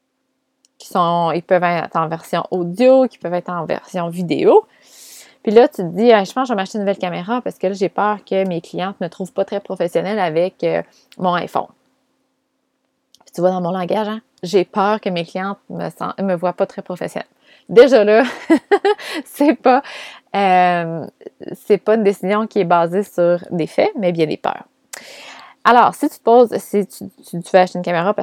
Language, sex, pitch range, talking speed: French, female, 180-235 Hz, 205 wpm